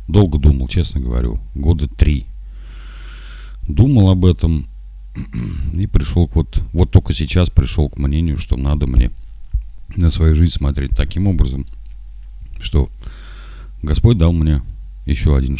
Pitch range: 65-85 Hz